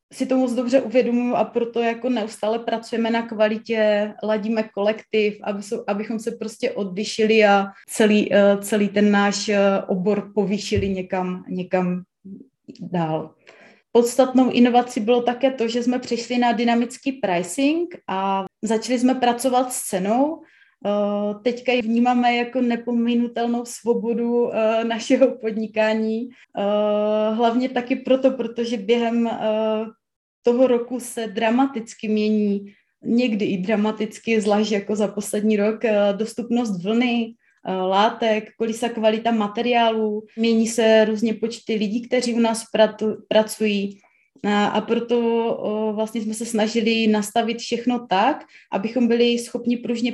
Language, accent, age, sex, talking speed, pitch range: Czech, native, 30-49, female, 120 wpm, 210-235 Hz